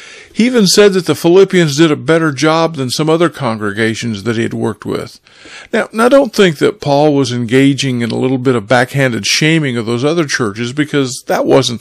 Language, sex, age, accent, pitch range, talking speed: English, male, 50-69, American, 125-160 Hz, 215 wpm